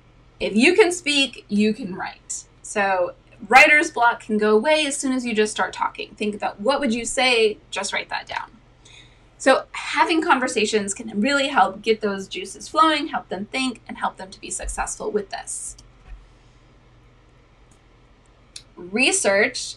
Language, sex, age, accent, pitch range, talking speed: English, female, 20-39, American, 210-280 Hz, 160 wpm